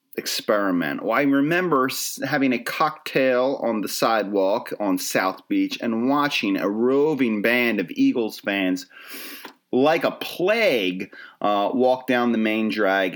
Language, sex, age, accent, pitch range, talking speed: English, male, 30-49, American, 95-145 Hz, 130 wpm